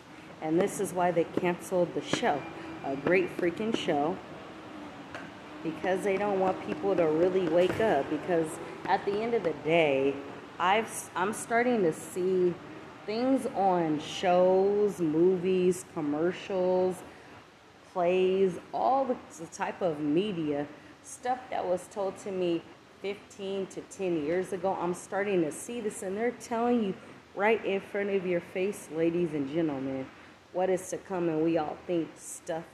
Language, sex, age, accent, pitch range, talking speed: English, female, 30-49, American, 155-195 Hz, 150 wpm